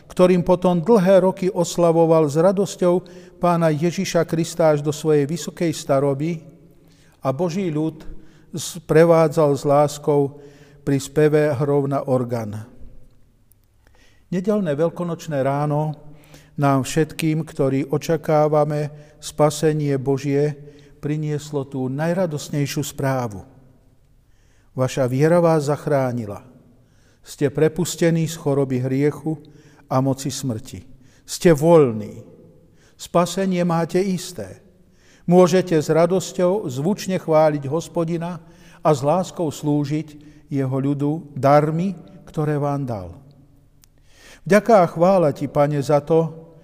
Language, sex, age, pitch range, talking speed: Slovak, male, 50-69, 140-165 Hz, 100 wpm